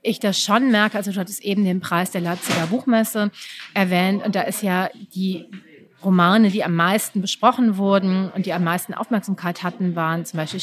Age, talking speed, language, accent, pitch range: 30-49, 190 wpm, German, German, 170-205 Hz